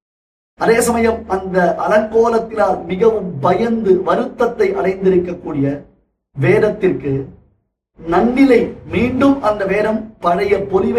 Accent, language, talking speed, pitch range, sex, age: native, Tamil, 65 wpm, 175-215 Hz, male, 50-69